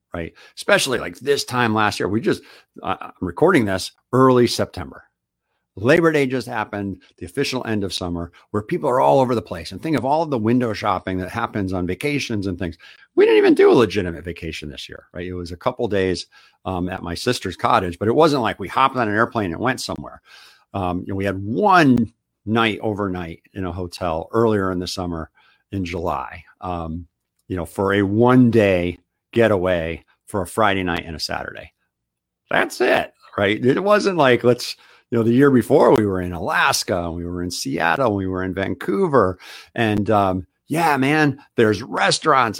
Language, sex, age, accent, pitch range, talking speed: English, male, 50-69, American, 90-120 Hz, 200 wpm